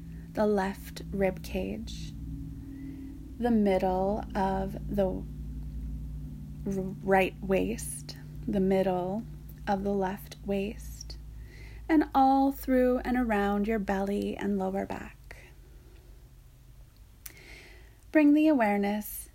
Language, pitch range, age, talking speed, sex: English, 180-235 Hz, 30-49, 90 wpm, female